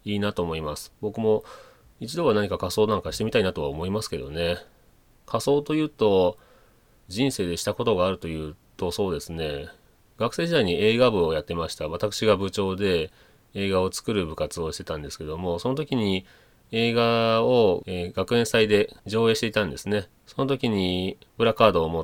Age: 30-49